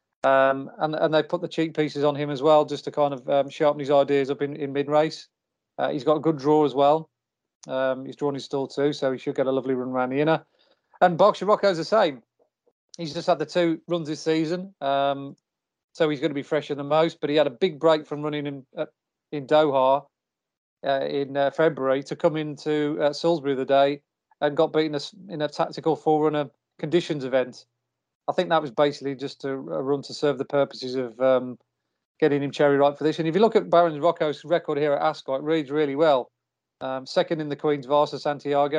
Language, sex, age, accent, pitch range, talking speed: English, male, 30-49, British, 140-160 Hz, 220 wpm